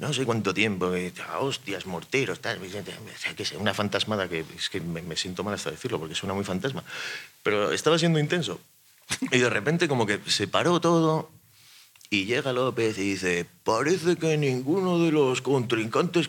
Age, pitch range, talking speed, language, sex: 30-49, 100-155 Hz, 190 wpm, Spanish, male